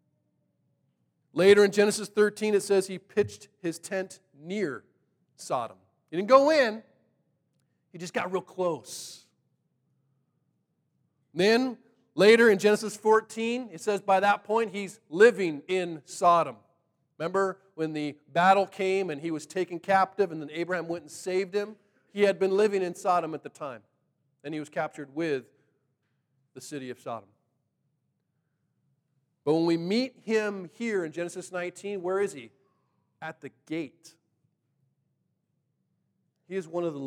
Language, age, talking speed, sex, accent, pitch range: English, 40-59, 145 wpm, male, American, 150-200 Hz